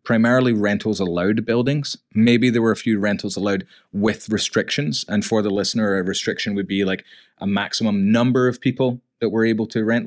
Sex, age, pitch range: male, 20-39, 100-120 Hz